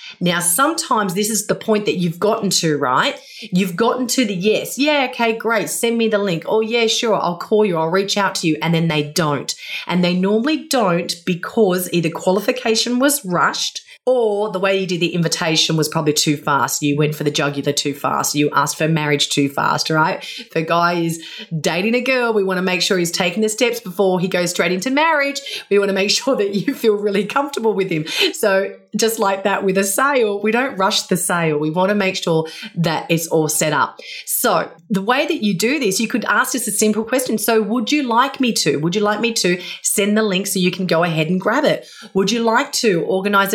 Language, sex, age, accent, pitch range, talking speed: English, female, 30-49, Australian, 175-225 Hz, 230 wpm